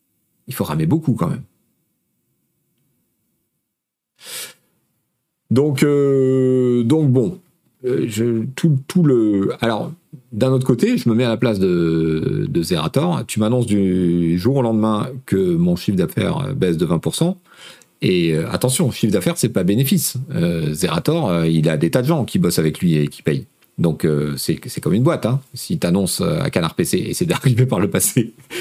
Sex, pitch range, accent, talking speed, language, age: male, 100-160 Hz, French, 170 wpm, French, 40-59